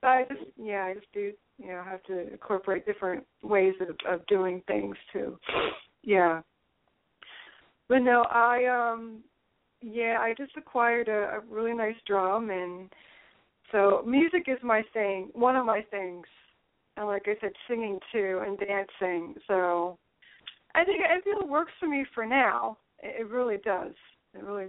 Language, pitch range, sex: English, 195-255 Hz, female